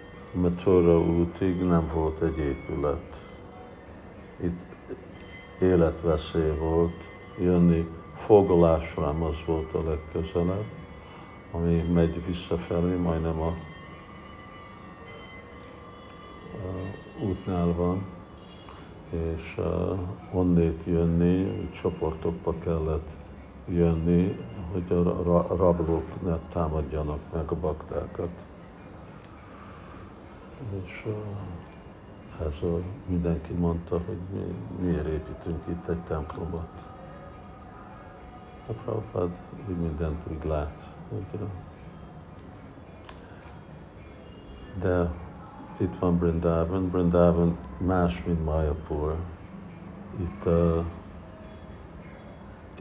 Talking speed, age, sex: 75 wpm, 60-79, male